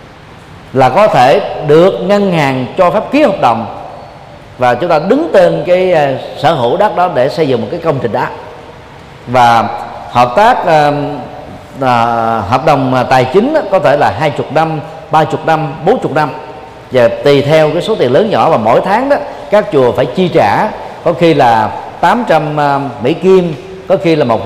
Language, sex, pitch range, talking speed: Vietnamese, male, 130-185 Hz, 190 wpm